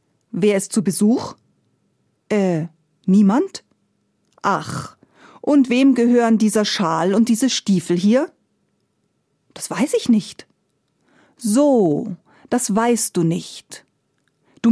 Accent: German